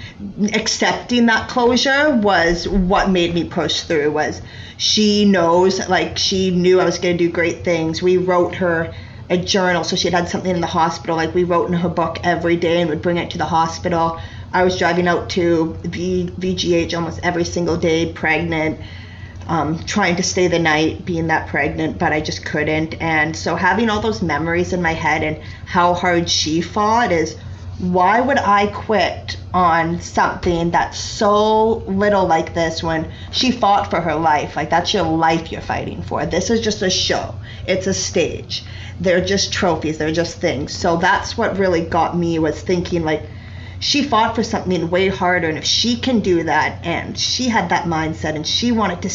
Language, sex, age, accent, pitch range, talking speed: English, female, 30-49, American, 160-190 Hz, 190 wpm